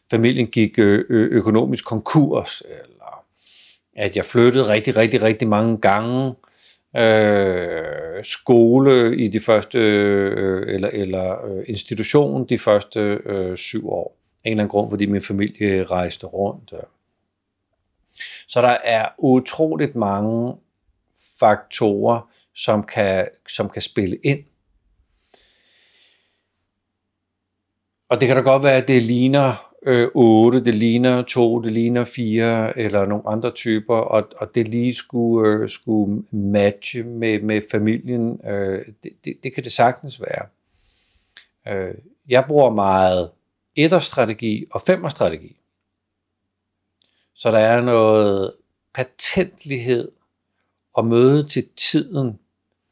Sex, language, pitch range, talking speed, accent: male, Danish, 100-125 Hz, 120 wpm, native